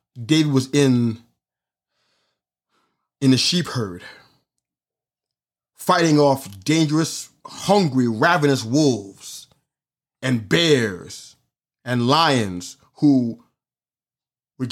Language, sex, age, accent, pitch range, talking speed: English, male, 30-49, American, 125-155 Hz, 75 wpm